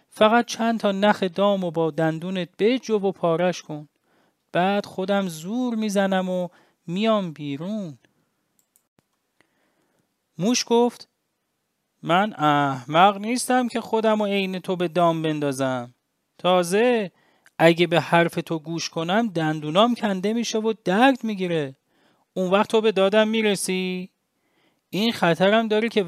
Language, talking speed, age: English, 130 wpm, 30-49